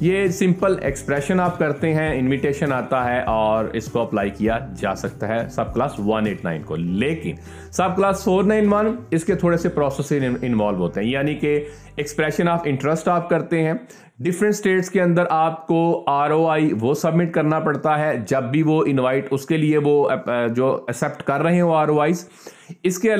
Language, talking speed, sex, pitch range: Urdu, 190 wpm, male, 135-175 Hz